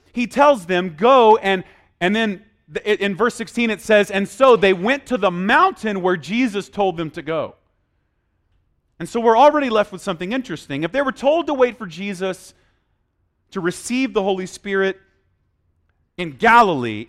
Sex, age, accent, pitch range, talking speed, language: male, 30-49, American, 135-220 Hz, 170 wpm, English